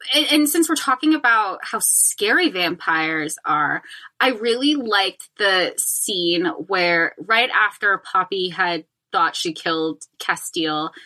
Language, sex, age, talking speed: English, female, 20-39, 130 wpm